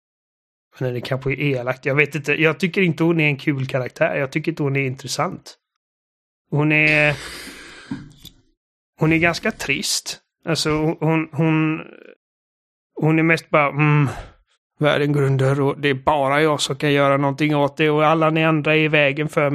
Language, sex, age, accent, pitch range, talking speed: Swedish, male, 30-49, native, 140-160 Hz, 175 wpm